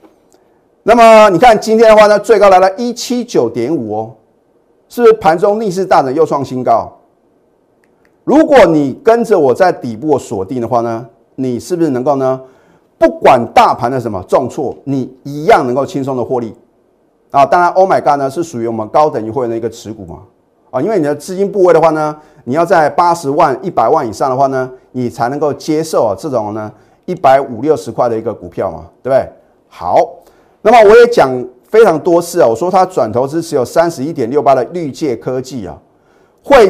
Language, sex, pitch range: Chinese, male, 120-175 Hz